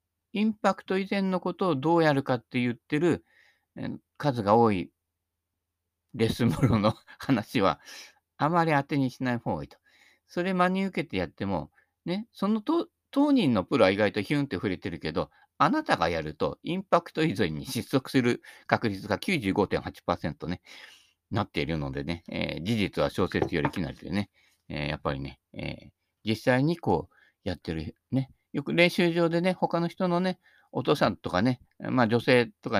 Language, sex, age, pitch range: Japanese, male, 50-69, 90-145 Hz